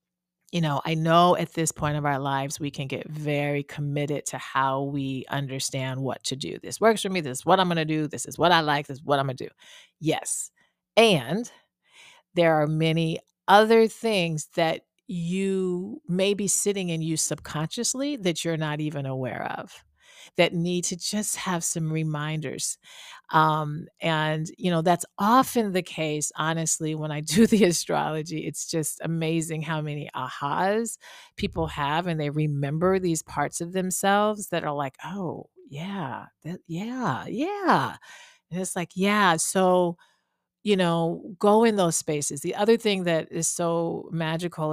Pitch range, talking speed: 145-185 Hz, 170 wpm